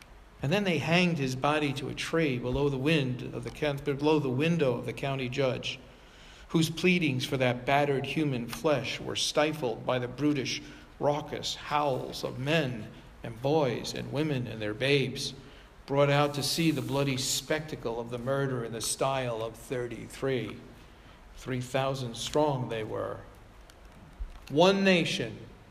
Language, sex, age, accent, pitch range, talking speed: English, male, 50-69, American, 125-160 Hz, 145 wpm